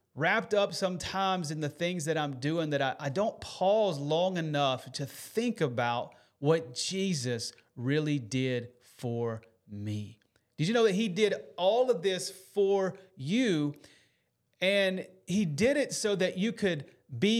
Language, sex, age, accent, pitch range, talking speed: English, male, 30-49, American, 160-215 Hz, 155 wpm